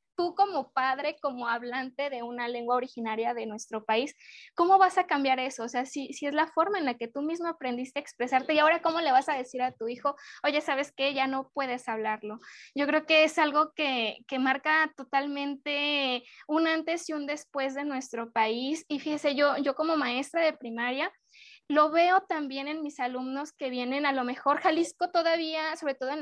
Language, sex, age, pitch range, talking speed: Spanish, female, 20-39, 265-320 Hz, 205 wpm